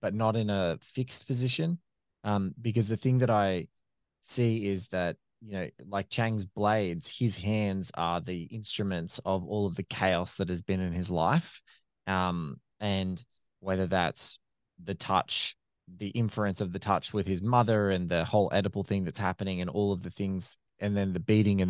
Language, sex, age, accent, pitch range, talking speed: English, male, 20-39, Australian, 95-115 Hz, 185 wpm